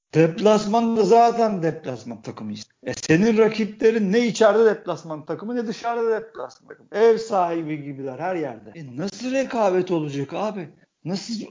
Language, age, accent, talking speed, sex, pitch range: Turkish, 50-69, native, 145 wpm, male, 155-200 Hz